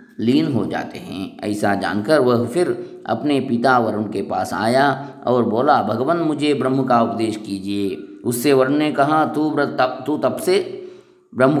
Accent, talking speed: Indian, 165 wpm